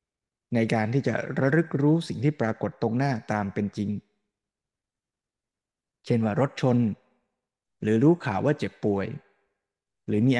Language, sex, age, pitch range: Thai, male, 20-39, 110-140 Hz